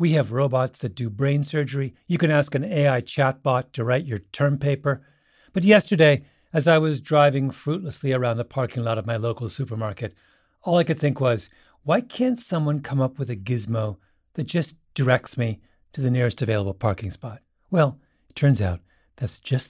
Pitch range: 120-160 Hz